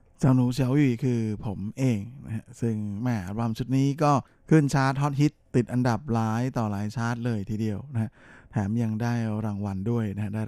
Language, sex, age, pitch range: Thai, male, 20-39, 105-120 Hz